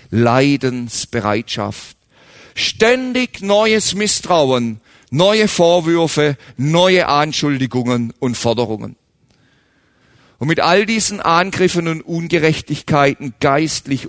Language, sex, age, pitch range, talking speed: German, male, 50-69, 120-170 Hz, 75 wpm